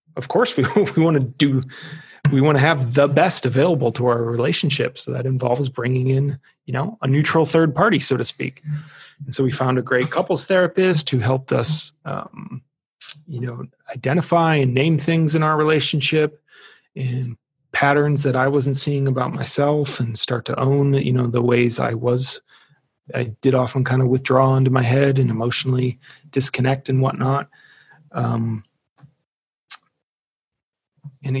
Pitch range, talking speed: 130-150 Hz, 165 wpm